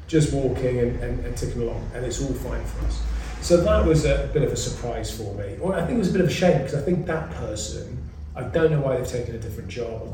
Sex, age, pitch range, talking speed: male, 30-49, 110-145 Hz, 285 wpm